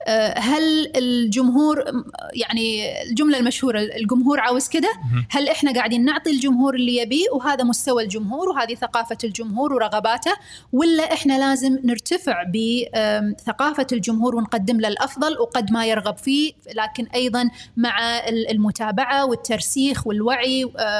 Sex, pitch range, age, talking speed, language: female, 230-285 Hz, 30-49, 115 wpm, Arabic